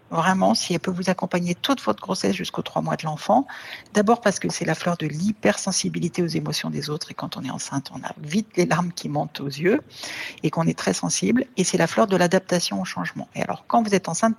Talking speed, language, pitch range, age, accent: 245 wpm, French, 155-210 Hz, 60-79, French